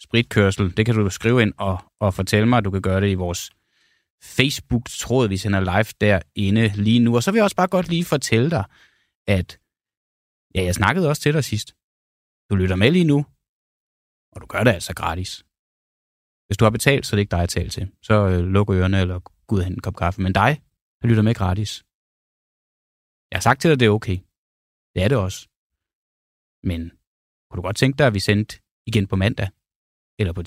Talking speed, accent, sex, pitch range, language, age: 205 wpm, native, male, 95-115 Hz, Danish, 20-39